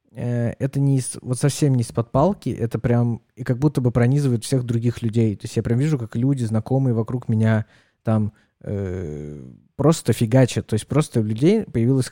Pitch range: 110-135 Hz